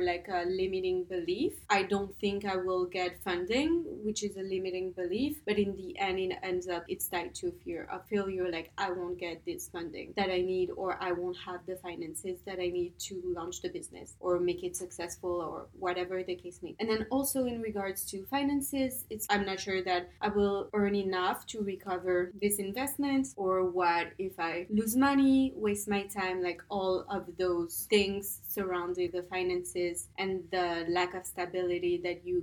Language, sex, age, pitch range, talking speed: English, female, 20-39, 180-210 Hz, 190 wpm